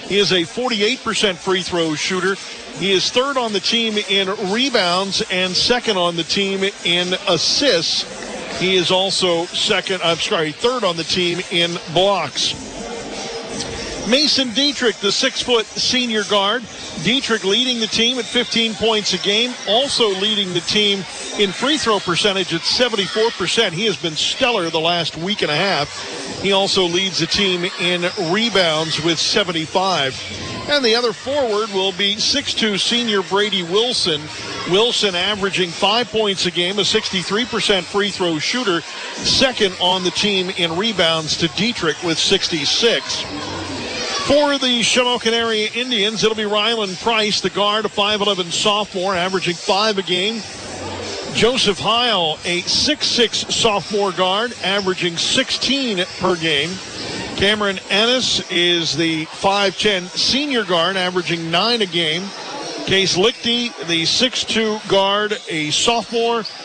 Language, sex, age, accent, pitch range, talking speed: English, male, 50-69, American, 180-225 Hz, 140 wpm